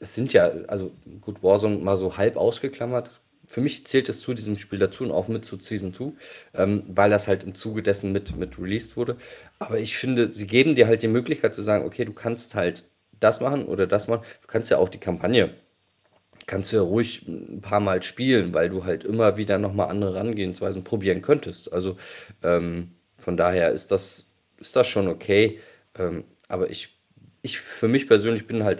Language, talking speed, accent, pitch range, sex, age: German, 200 wpm, German, 95-110 Hz, male, 30-49